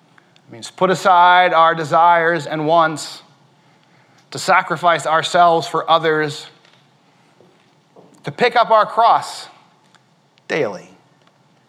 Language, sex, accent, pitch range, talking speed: English, male, American, 140-170 Hz, 100 wpm